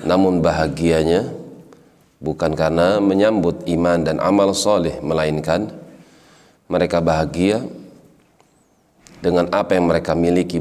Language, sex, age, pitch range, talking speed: Indonesian, male, 40-59, 80-95 Hz, 95 wpm